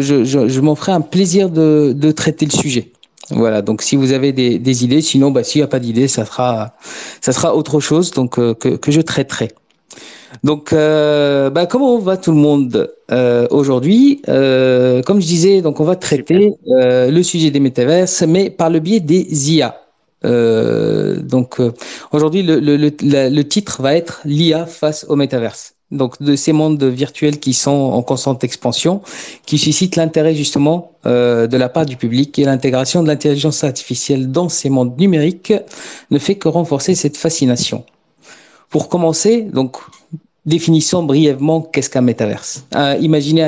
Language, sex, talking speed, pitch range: French, male, 175 wpm, 130-160 Hz